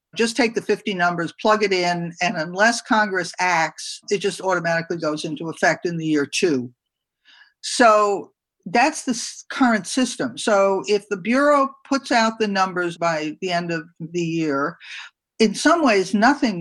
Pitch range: 170-220 Hz